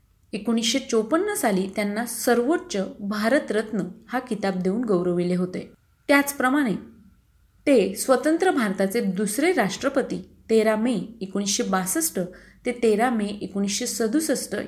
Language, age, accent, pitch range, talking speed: Marathi, 30-49, native, 195-265 Hz, 100 wpm